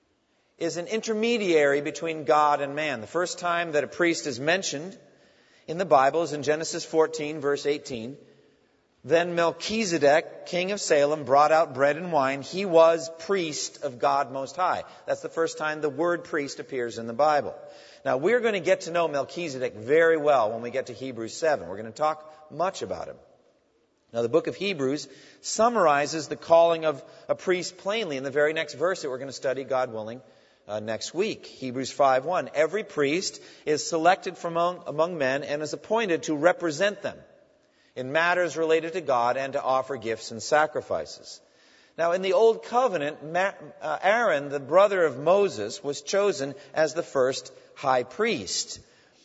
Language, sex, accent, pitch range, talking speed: English, male, American, 140-175 Hz, 180 wpm